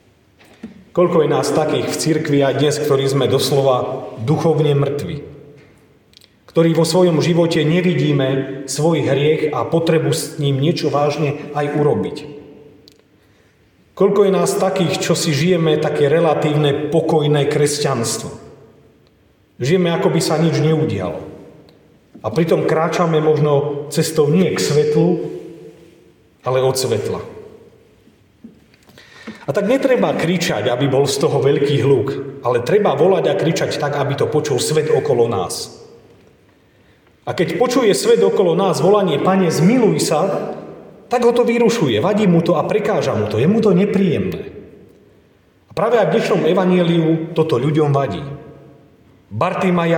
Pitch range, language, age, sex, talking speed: 145-180 Hz, Czech, 40-59, male, 135 wpm